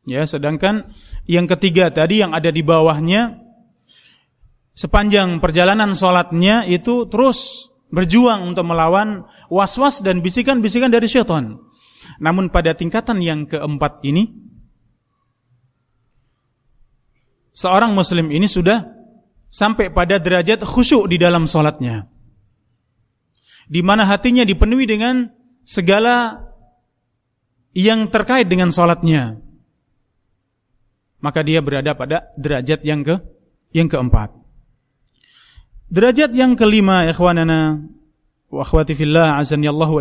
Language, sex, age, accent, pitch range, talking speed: Indonesian, male, 30-49, native, 150-215 Hz, 100 wpm